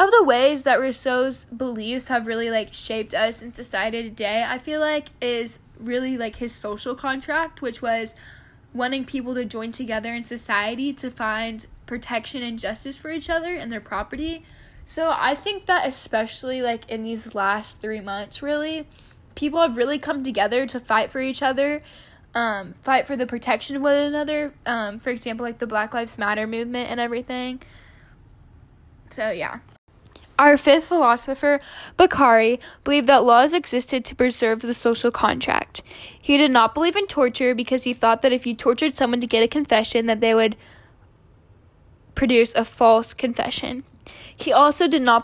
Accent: American